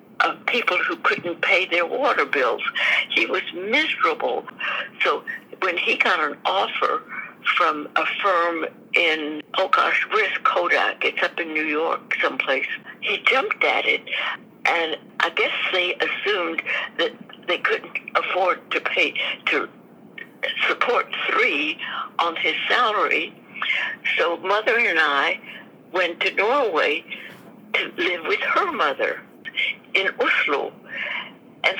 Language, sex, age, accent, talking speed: English, female, 60-79, American, 125 wpm